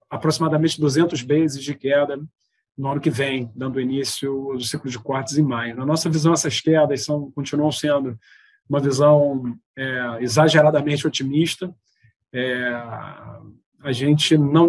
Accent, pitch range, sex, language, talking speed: Brazilian, 130-150 Hz, male, Portuguese, 140 wpm